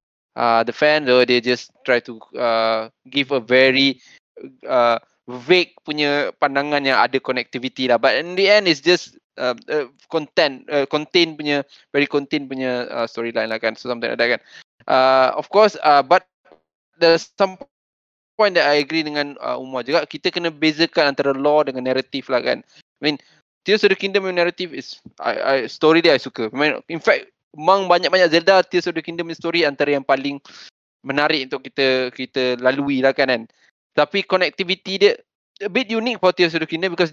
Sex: male